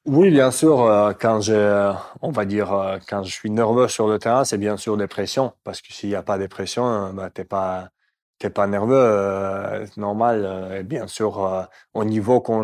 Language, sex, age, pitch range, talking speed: French, male, 20-39, 100-115 Hz, 235 wpm